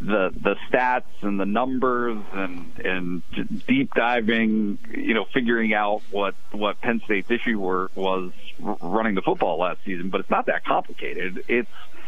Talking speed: 160 wpm